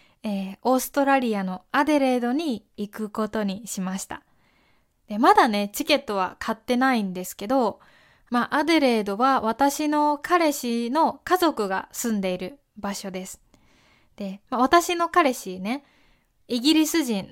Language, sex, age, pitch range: Japanese, female, 20-39, 210-290 Hz